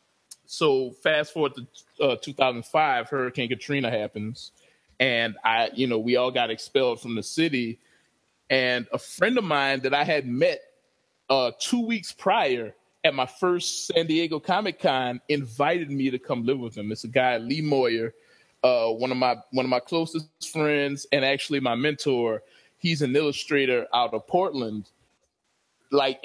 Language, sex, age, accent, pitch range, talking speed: English, male, 20-39, American, 125-160 Hz, 160 wpm